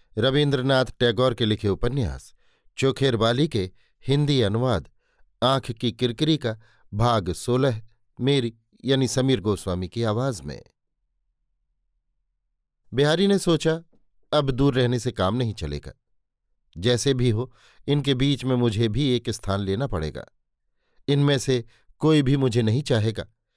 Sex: male